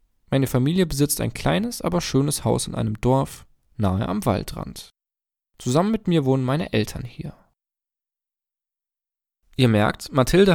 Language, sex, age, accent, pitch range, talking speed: German, male, 20-39, German, 110-150 Hz, 135 wpm